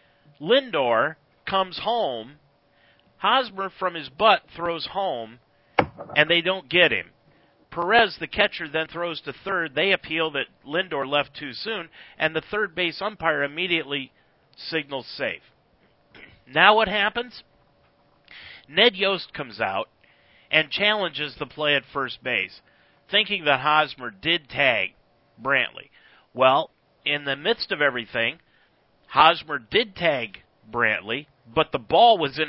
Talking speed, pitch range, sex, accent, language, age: 130 wpm, 150-210 Hz, male, American, English, 50-69